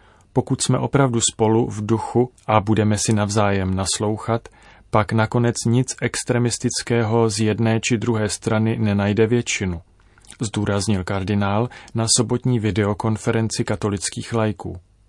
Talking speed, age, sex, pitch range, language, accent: 115 wpm, 30-49, male, 100-120 Hz, Czech, native